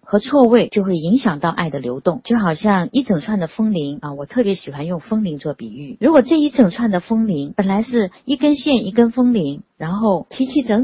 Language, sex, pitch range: Chinese, female, 165-240 Hz